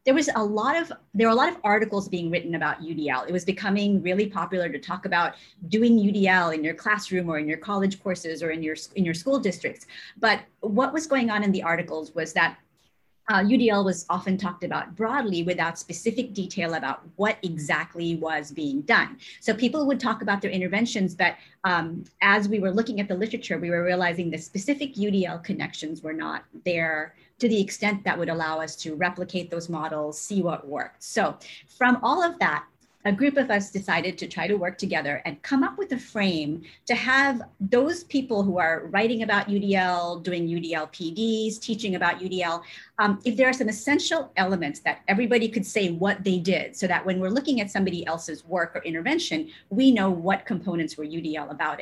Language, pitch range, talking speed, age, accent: English, 170-220 Hz, 200 wpm, 30-49, American